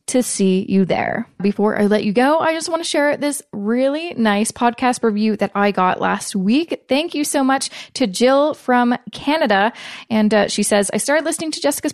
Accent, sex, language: American, female, English